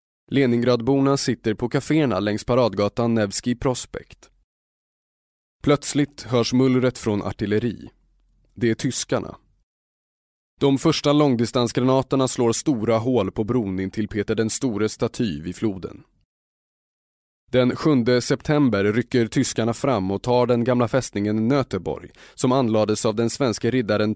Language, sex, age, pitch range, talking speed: Swedish, male, 20-39, 110-130 Hz, 125 wpm